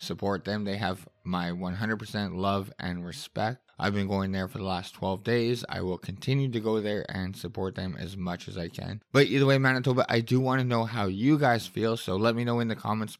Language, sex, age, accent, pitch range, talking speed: English, male, 20-39, American, 95-115 Hz, 235 wpm